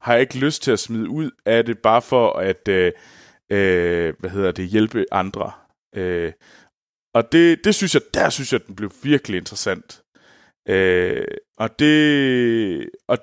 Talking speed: 170 wpm